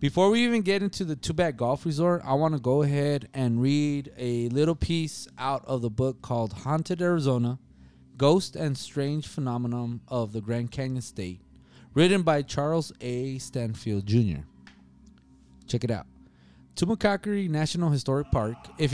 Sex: male